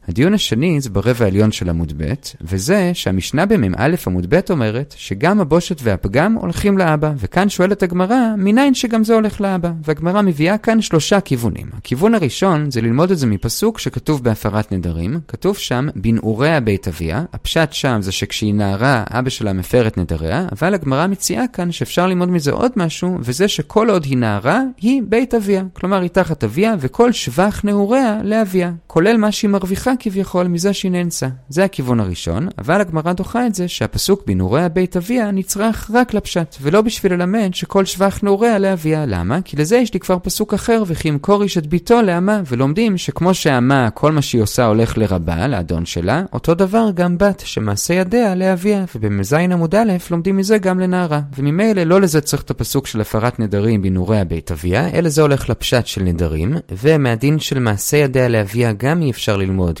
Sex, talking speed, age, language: male, 155 wpm, 30-49, Hebrew